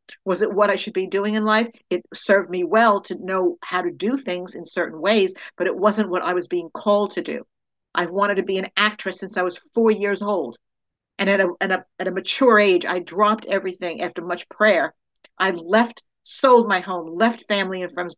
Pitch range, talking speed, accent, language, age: 185-225 Hz, 230 wpm, American, English, 50-69